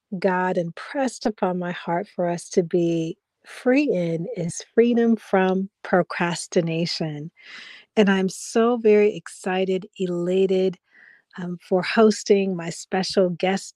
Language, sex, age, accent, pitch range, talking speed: English, female, 50-69, American, 180-225 Hz, 120 wpm